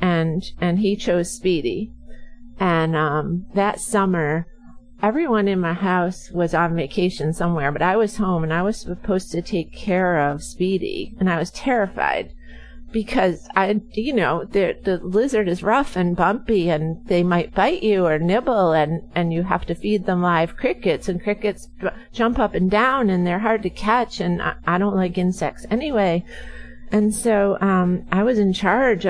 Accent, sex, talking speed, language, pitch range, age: American, female, 175 wpm, English, 165-210 Hz, 40-59